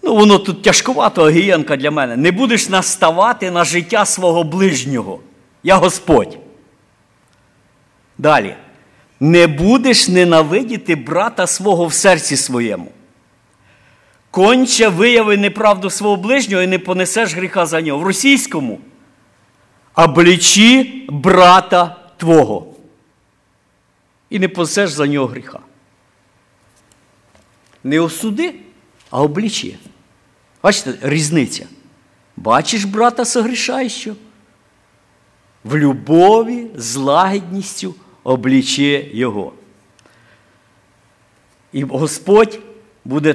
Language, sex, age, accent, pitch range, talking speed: Ukrainian, male, 50-69, native, 150-220 Hz, 90 wpm